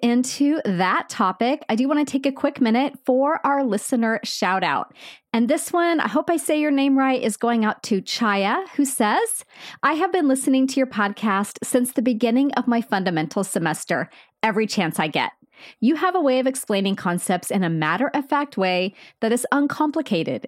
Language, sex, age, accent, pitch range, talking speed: English, female, 30-49, American, 205-275 Hz, 195 wpm